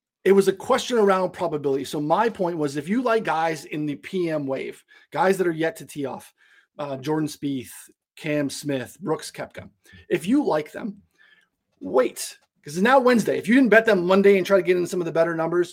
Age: 30-49